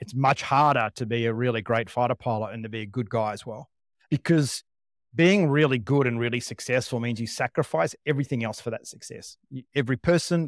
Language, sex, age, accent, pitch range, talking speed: English, male, 30-49, Australian, 110-135 Hz, 200 wpm